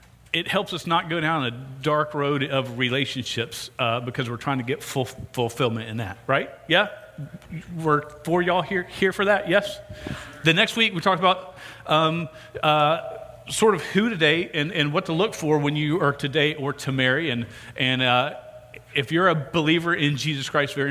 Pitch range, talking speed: 130-160 Hz, 195 wpm